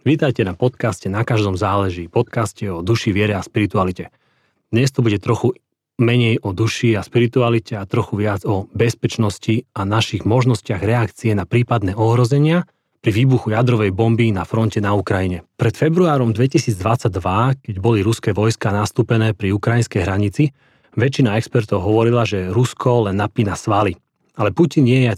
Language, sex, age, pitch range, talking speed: Slovak, male, 30-49, 105-125 Hz, 155 wpm